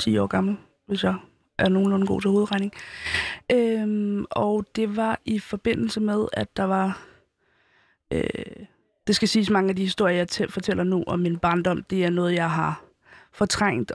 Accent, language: native, Danish